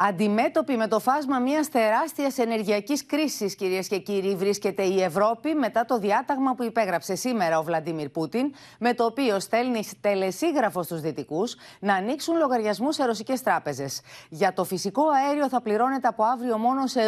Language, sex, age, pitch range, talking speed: Greek, female, 30-49, 185-255 Hz, 160 wpm